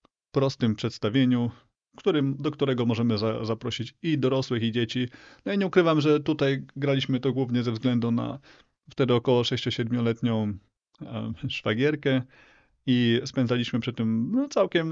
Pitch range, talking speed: 110-135 Hz, 130 wpm